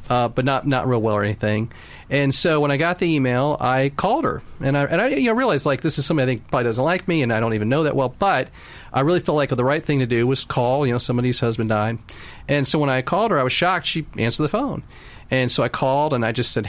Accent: American